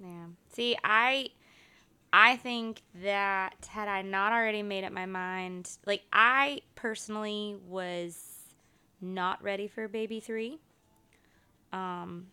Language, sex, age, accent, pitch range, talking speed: English, female, 20-39, American, 180-210 Hz, 115 wpm